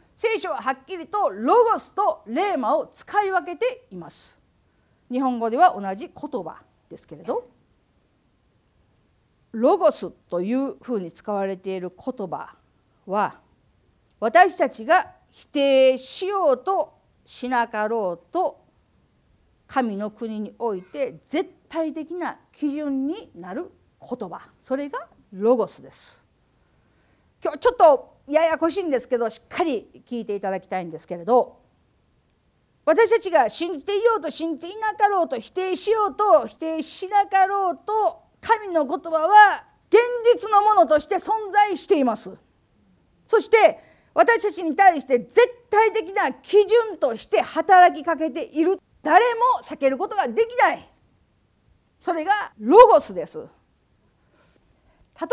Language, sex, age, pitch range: Japanese, female, 50-69, 255-405 Hz